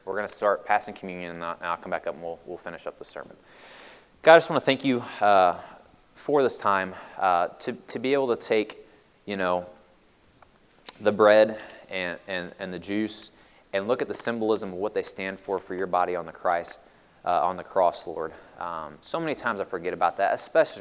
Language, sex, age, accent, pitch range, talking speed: English, male, 20-39, American, 90-120 Hz, 215 wpm